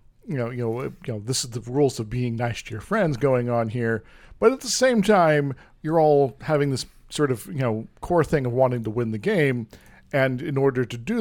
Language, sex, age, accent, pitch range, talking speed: English, male, 40-59, American, 120-160 Hz, 240 wpm